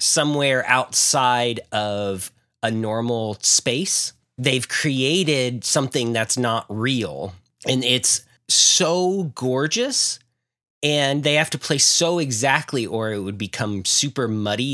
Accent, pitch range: American, 110-145 Hz